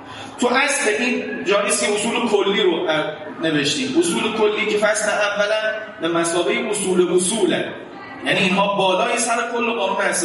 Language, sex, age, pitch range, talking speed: Persian, male, 30-49, 170-240 Hz, 145 wpm